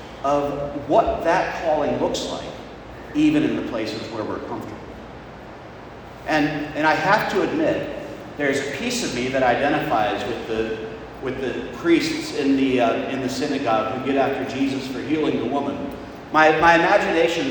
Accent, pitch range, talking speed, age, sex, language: American, 140-205 Hz, 155 wpm, 40-59, male, English